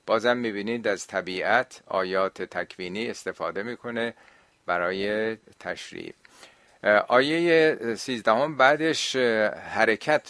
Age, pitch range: 50-69, 95-120 Hz